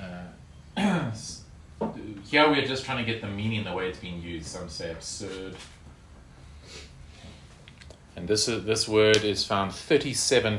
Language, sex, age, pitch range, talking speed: English, male, 30-49, 80-100 Hz, 140 wpm